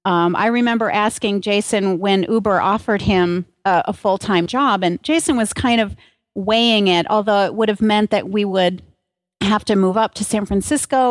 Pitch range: 185-220 Hz